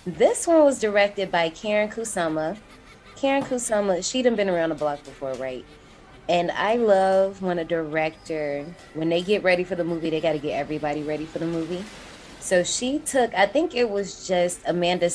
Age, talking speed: 20-39, 190 wpm